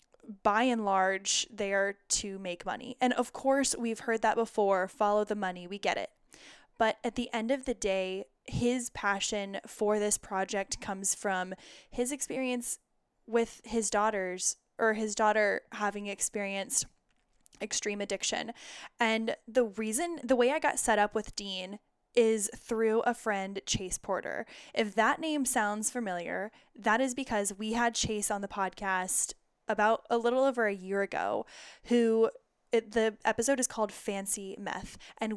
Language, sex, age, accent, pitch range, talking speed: English, female, 10-29, American, 200-235 Hz, 160 wpm